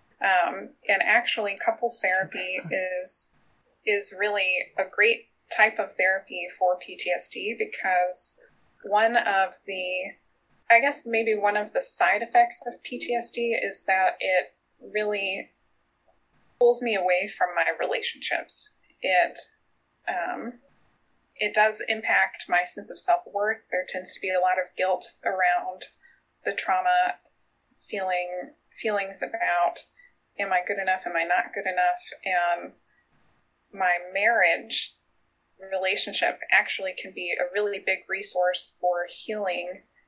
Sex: female